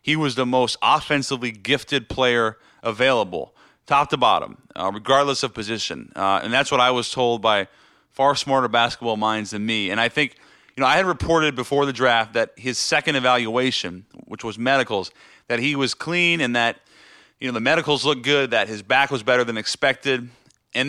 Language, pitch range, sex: English, 115-140 Hz, male